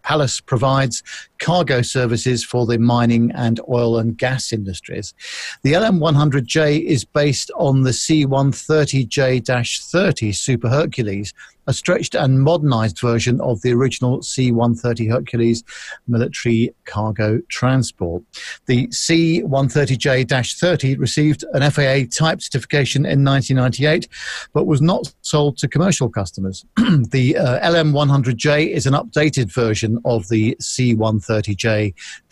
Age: 50-69